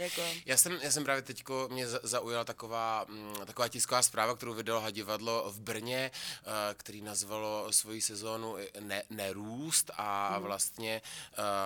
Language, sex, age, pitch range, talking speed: Czech, male, 20-39, 100-110 Hz, 130 wpm